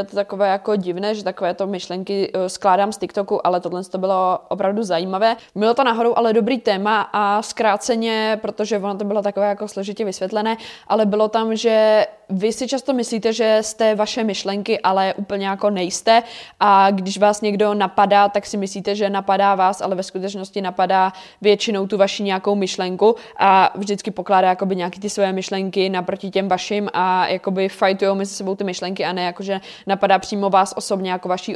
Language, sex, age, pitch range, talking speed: Czech, female, 20-39, 190-210 Hz, 180 wpm